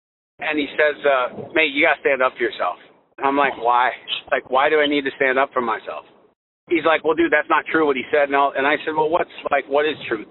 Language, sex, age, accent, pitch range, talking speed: English, male, 50-69, American, 135-170 Hz, 270 wpm